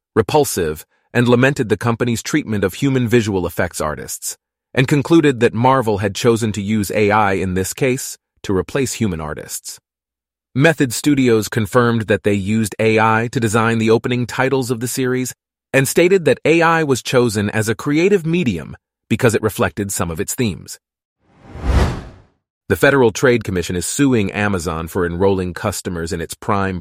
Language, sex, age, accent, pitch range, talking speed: English, male, 30-49, American, 100-135 Hz, 160 wpm